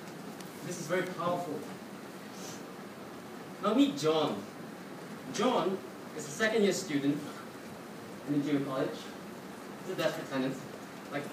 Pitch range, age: 165-220 Hz, 40-59